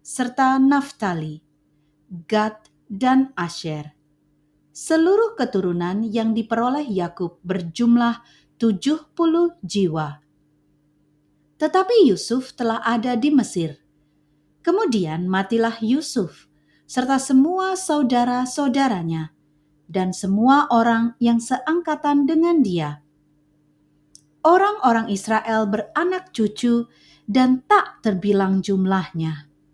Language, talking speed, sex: Indonesian, 80 wpm, female